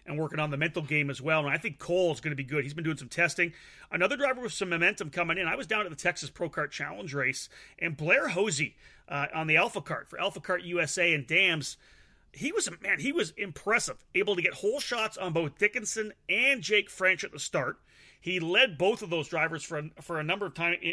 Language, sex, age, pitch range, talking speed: English, male, 30-49, 150-180 Hz, 245 wpm